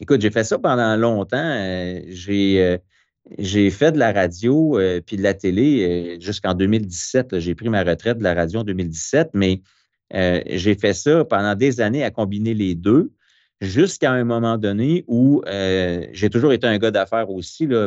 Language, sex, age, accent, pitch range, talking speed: French, male, 30-49, Canadian, 90-110 Hz, 195 wpm